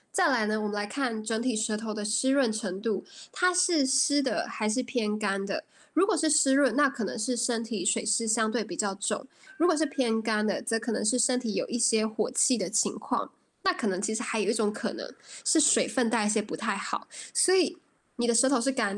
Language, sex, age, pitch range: Chinese, female, 10-29, 215-270 Hz